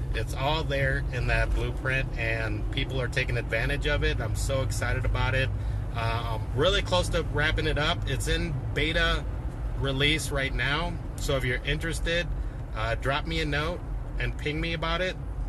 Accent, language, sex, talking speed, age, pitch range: American, English, male, 180 wpm, 30-49, 110-140 Hz